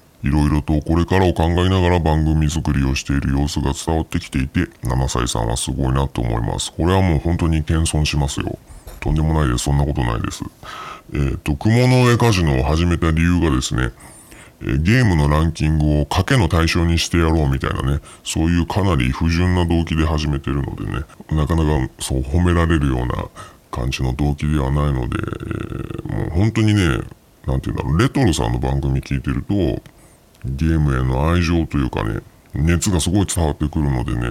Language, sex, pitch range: Japanese, female, 70-85 Hz